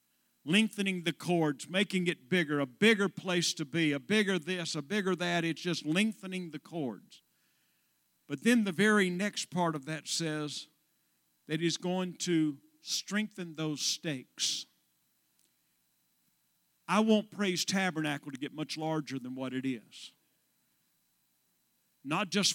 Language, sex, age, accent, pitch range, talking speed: English, male, 50-69, American, 150-215 Hz, 140 wpm